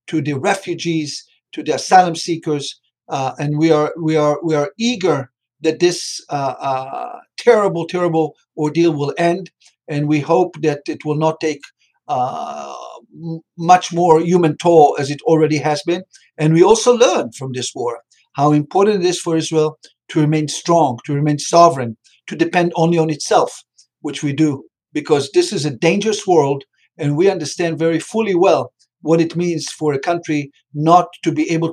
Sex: male